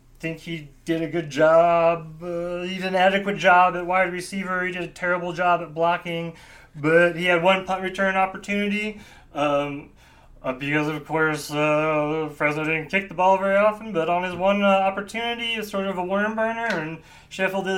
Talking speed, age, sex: 200 wpm, 30-49, male